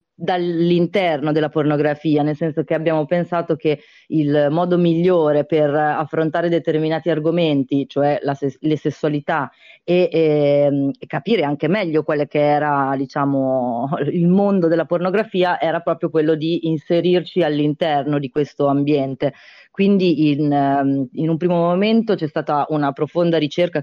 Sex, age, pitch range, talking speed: female, 20-39, 145-165 Hz, 140 wpm